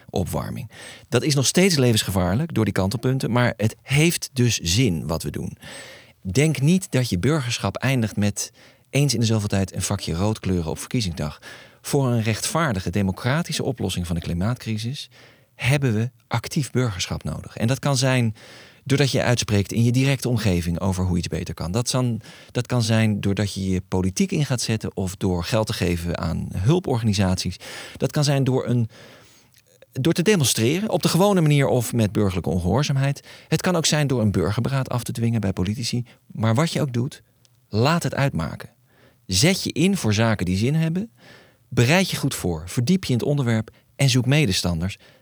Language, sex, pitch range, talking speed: Dutch, male, 95-135 Hz, 180 wpm